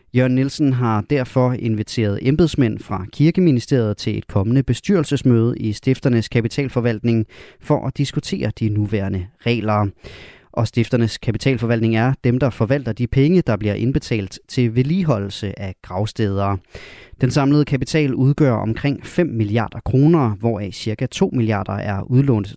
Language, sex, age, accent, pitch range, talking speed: Danish, male, 20-39, native, 110-140 Hz, 135 wpm